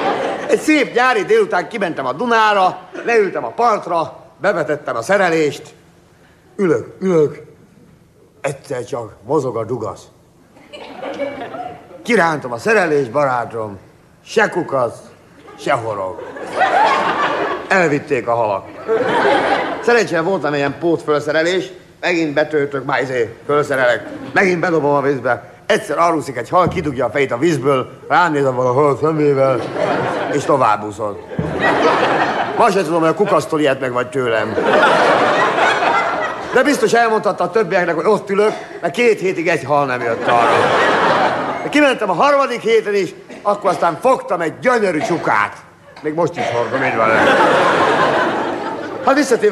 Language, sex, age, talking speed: Hungarian, male, 50-69, 125 wpm